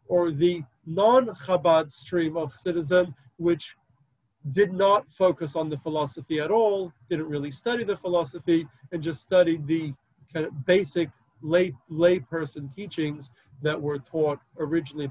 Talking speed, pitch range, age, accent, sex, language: 135 wpm, 135-165 Hz, 40-59, American, male, English